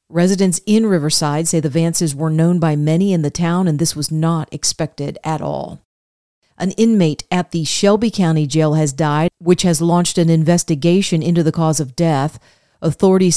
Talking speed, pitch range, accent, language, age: 180 wpm, 160-190 Hz, American, English, 40-59